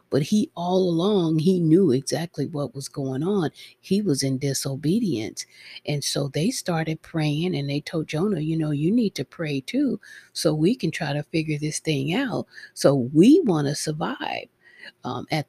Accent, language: American, English